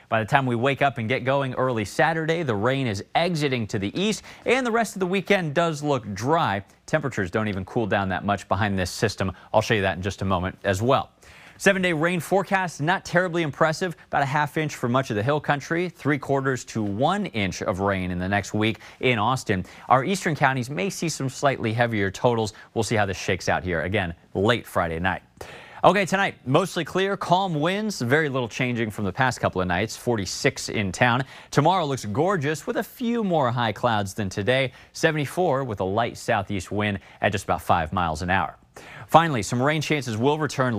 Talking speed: 210 wpm